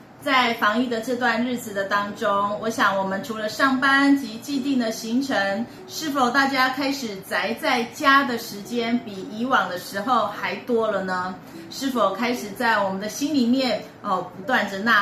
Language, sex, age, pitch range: Chinese, female, 30-49, 215-275 Hz